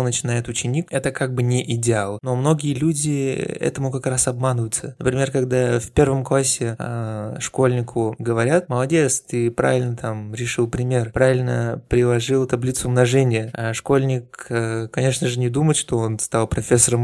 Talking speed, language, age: 150 wpm, Russian, 20-39